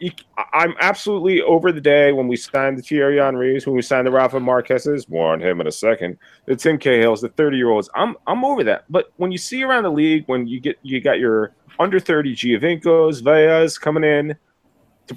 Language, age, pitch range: English, 30-49, 115-155 Hz